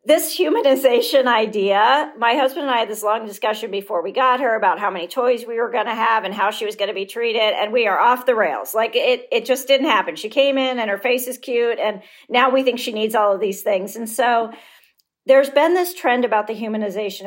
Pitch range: 190-235 Hz